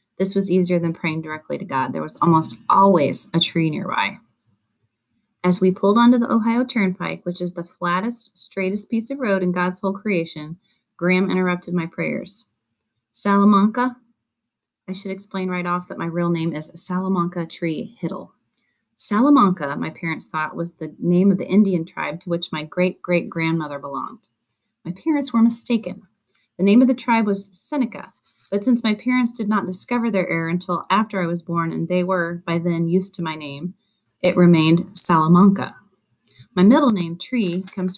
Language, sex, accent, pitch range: English, female, American, 170-205 Hz